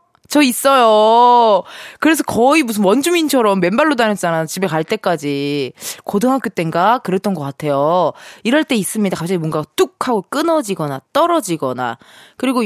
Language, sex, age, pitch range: Korean, female, 20-39, 185-300 Hz